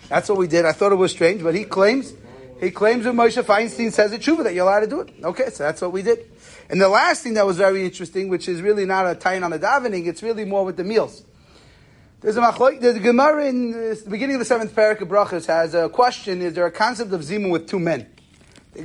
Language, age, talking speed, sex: English, 30-49, 255 wpm, male